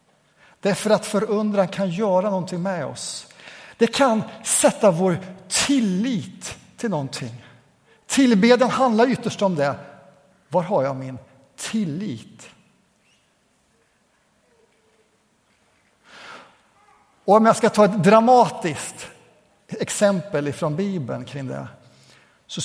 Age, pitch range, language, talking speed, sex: 60-79, 140-195 Hz, Swedish, 100 wpm, male